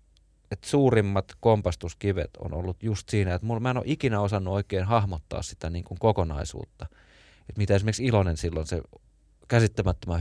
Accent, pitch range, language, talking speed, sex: native, 85-110 Hz, Finnish, 145 wpm, male